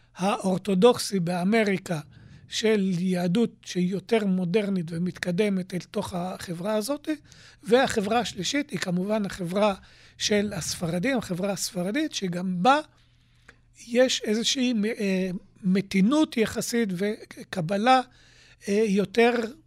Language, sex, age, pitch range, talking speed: Hebrew, male, 50-69, 180-225 Hz, 90 wpm